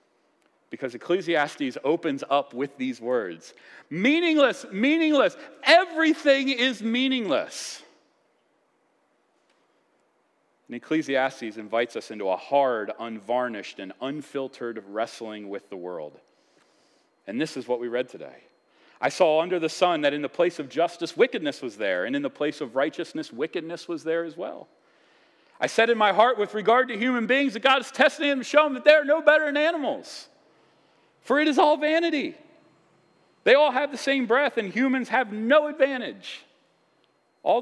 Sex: male